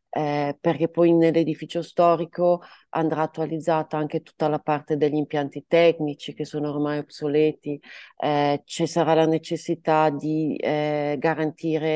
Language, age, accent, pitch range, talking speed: Italian, 30-49, native, 155-175 Hz, 130 wpm